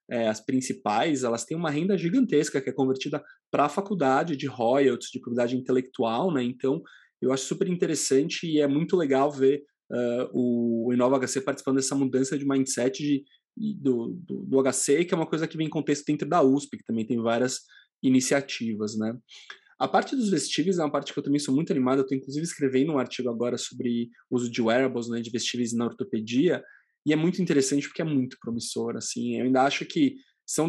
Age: 20-39